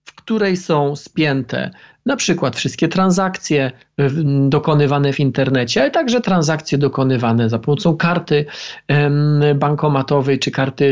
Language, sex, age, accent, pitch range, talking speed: Polish, male, 40-59, native, 140-190 Hz, 125 wpm